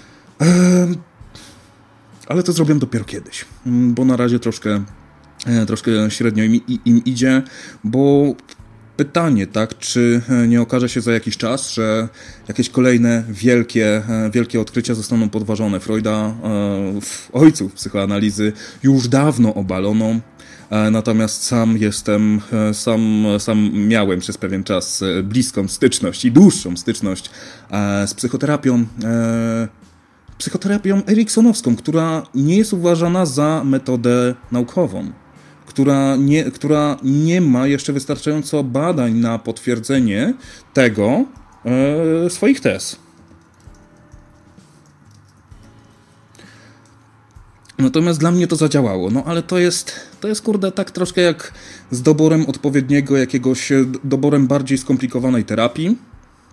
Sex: male